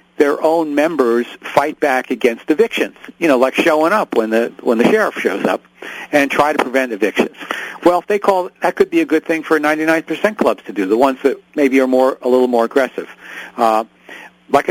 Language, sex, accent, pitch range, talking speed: English, male, American, 120-175 Hz, 210 wpm